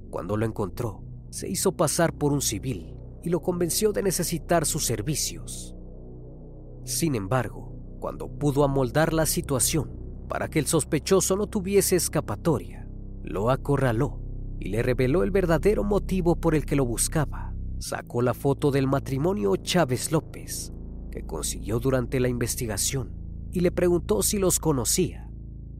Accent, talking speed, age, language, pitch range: Mexican, 140 wpm, 40-59, Spanish, 110-160 Hz